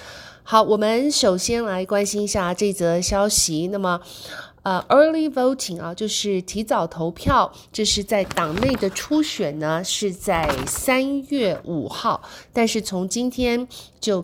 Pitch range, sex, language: 170-220 Hz, female, Chinese